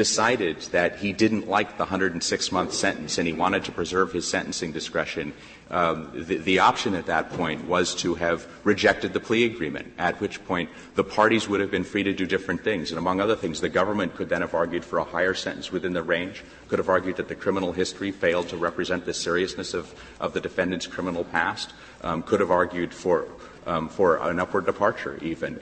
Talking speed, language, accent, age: 205 wpm, English, American, 40-59